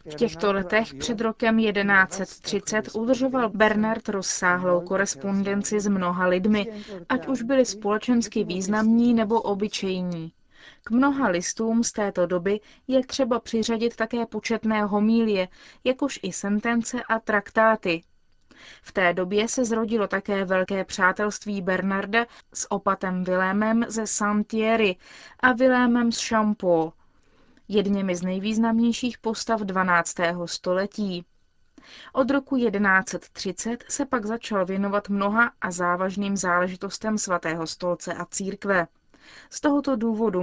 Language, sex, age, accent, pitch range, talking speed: Czech, female, 20-39, native, 190-230 Hz, 115 wpm